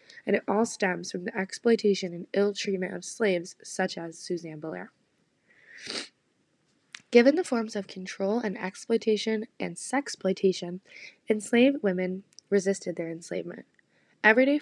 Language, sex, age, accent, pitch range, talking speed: English, female, 20-39, American, 185-225 Hz, 125 wpm